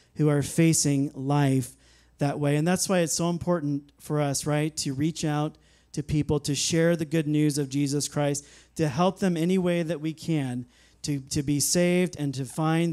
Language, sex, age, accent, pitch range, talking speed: English, male, 40-59, American, 145-175 Hz, 200 wpm